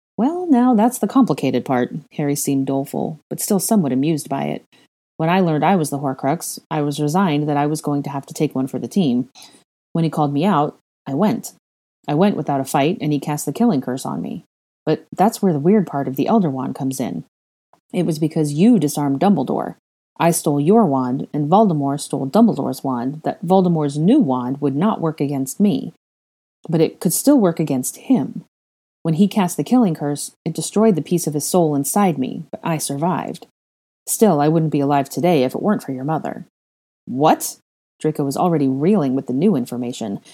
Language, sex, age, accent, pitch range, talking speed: English, female, 30-49, American, 140-185 Hz, 205 wpm